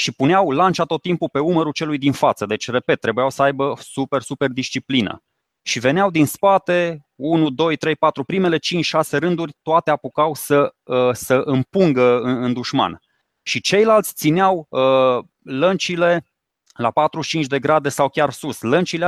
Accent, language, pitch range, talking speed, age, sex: native, Romanian, 130-160 Hz, 155 wpm, 20-39, male